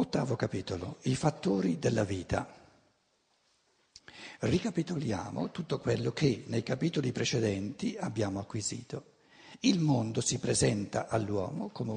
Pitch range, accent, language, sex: 105-155 Hz, native, Italian, male